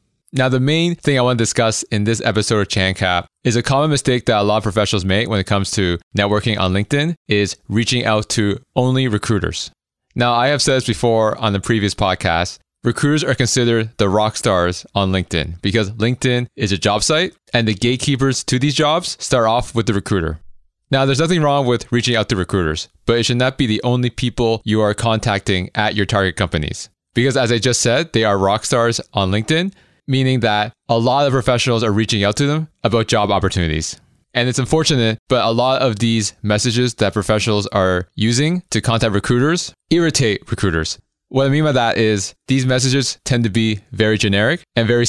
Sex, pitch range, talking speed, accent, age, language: male, 105-130 Hz, 205 wpm, American, 20-39, English